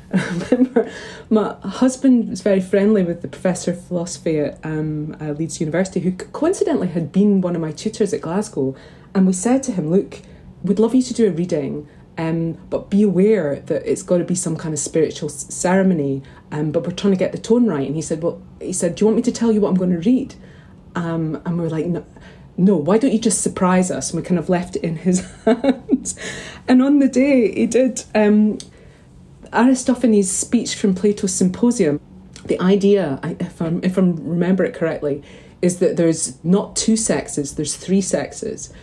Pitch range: 170-215 Hz